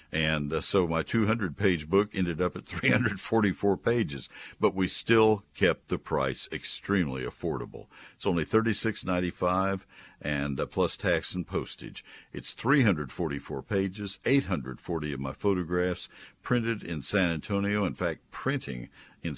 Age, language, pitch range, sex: 60-79, English, 80-100 Hz, male